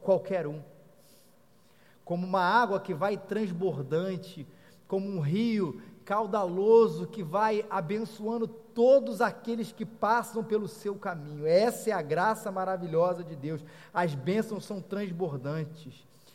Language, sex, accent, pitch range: Portuguese, male, Brazilian, 160-205 Hz